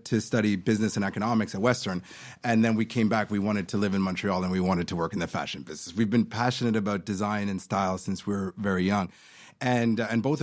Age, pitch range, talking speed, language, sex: 30-49, 100-115 Hz, 240 wpm, English, male